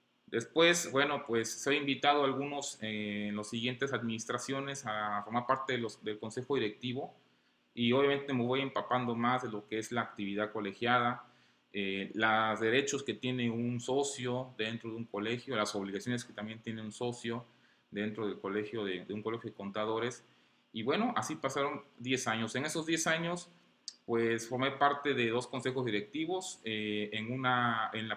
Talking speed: 175 wpm